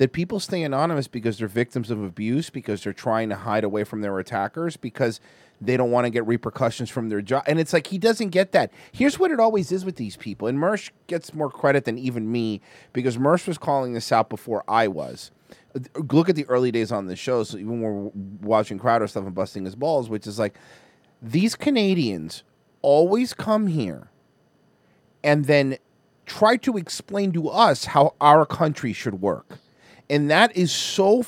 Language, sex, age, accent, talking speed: English, male, 30-49, American, 200 wpm